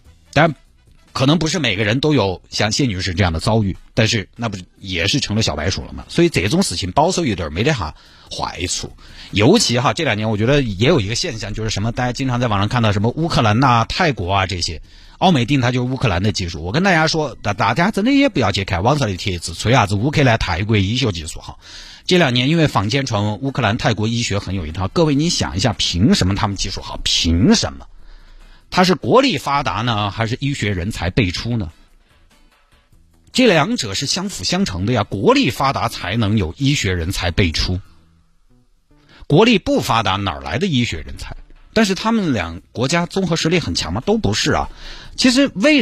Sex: male